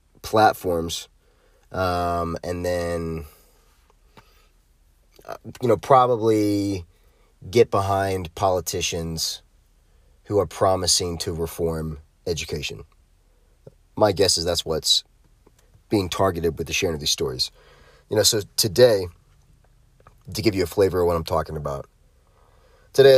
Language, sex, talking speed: English, male, 115 wpm